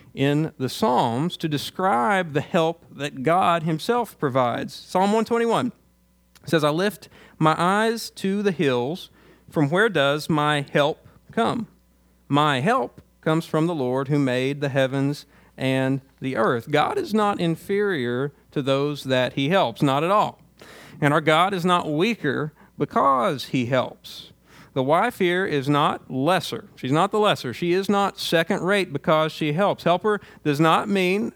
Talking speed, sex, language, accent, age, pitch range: 155 wpm, male, English, American, 40-59, 140-195 Hz